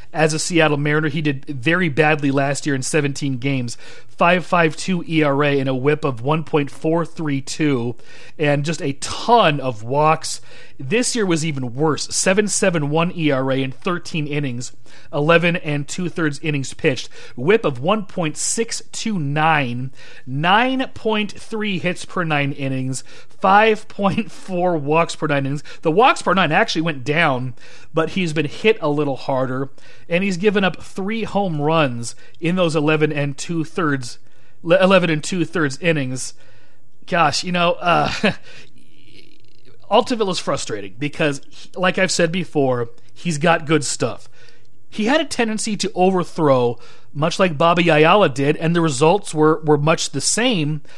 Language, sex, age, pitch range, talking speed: English, male, 40-59, 135-175 Hz, 145 wpm